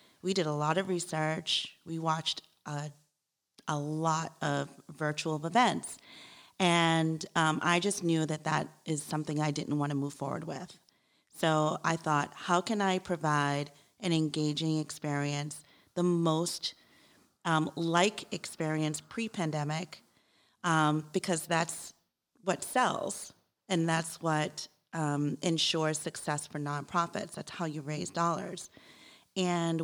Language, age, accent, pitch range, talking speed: English, 40-59, American, 150-170 Hz, 130 wpm